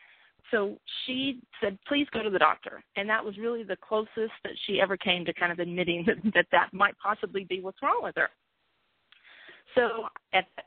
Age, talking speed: 40-59, 195 wpm